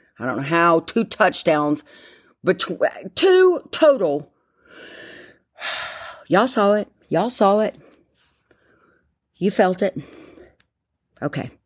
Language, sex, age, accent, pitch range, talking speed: English, female, 50-69, American, 155-210 Hz, 100 wpm